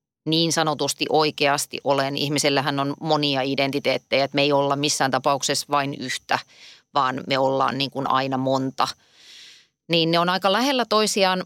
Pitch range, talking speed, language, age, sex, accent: 145-185 Hz, 145 wpm, Finnish, 30-49, female, native